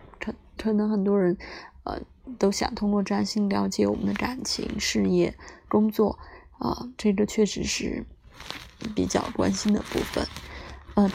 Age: 20-39